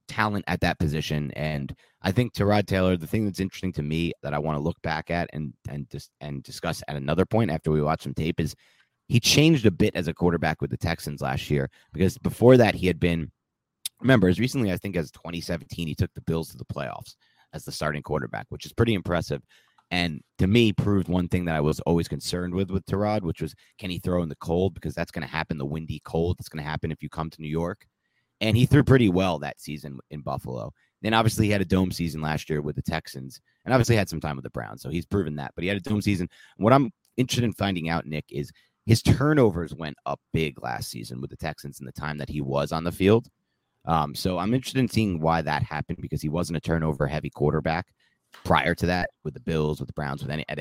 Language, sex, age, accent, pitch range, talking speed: English, male, 30-49, American, 75-100 Hz, 250 wpm